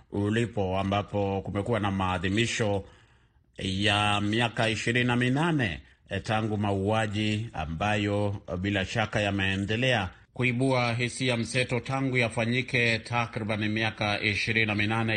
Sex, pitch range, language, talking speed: male, 95-115 Hz, Swahili, 90 wpm